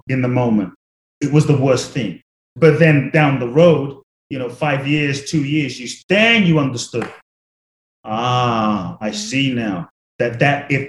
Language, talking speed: English, 165 wpm